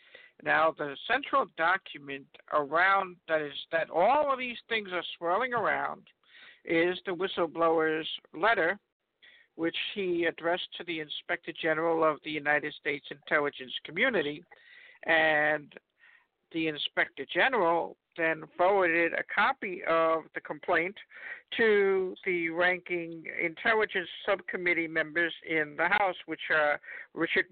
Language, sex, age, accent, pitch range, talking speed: English, male, 60-79, American, 160-210 Hz, 120 wpm